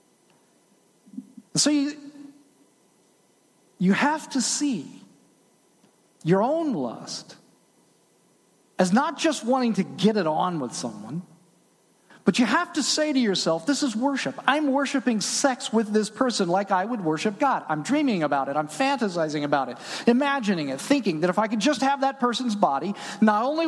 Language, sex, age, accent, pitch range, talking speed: English, male, 40-59, American, 200-280 Hz, 155 wpm